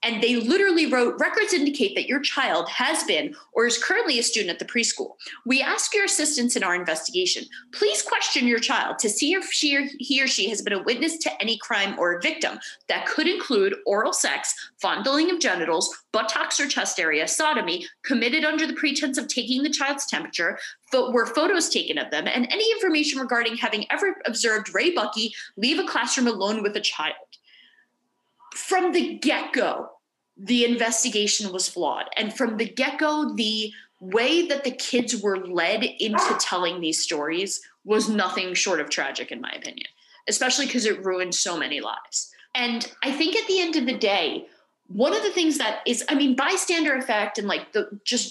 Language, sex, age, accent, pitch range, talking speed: English, female, 30-49, American, 215-310 Hz, 190 wpm